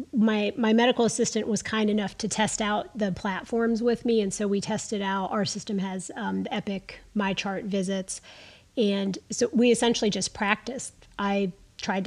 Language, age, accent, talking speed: English, 30-49, American, 175 wpm